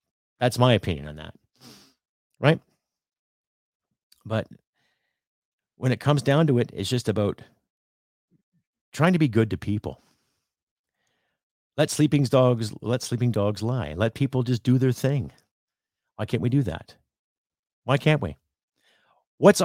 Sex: male